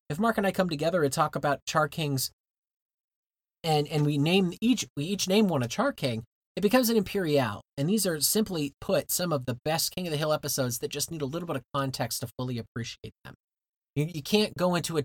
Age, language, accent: 30-49, English, American